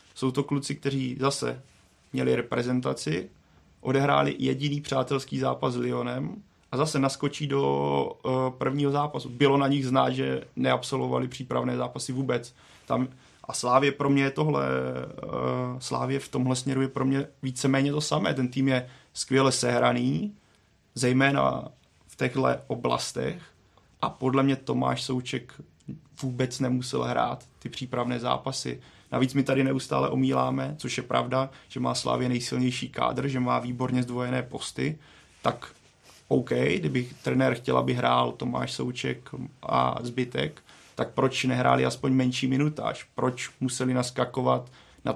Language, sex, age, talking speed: Czech, male, 30-49, 140 wpm